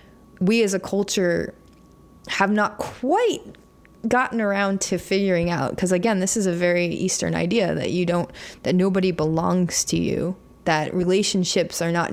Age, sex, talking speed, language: 20-39, female, 160 wpm, English